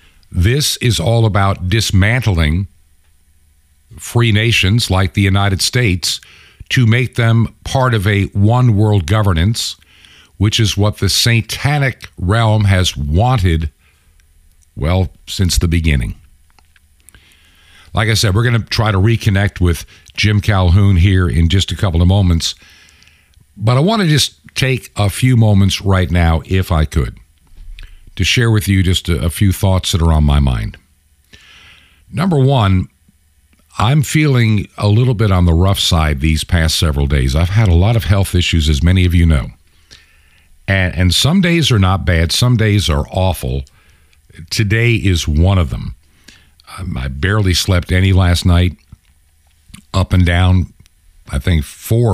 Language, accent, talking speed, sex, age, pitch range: English, American, 150 wpm, male, 50-69, 80-105 Hz